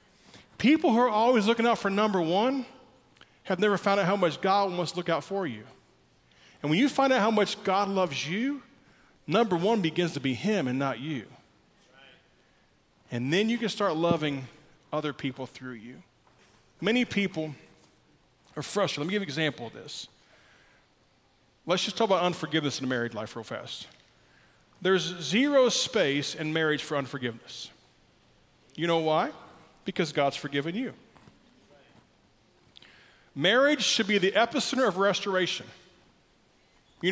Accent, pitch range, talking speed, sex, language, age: American, 155-215 Hz, 155 wpm, male, English, 40-59